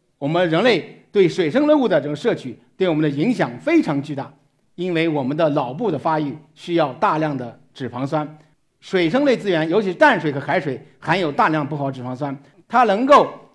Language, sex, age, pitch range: Chinese, male, 50-69, 145-220 Hz